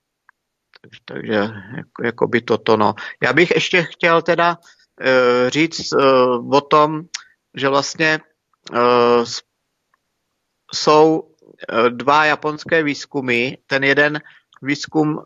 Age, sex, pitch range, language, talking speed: 50-69, male, 125-145 Hz, Slovak, 105 wpm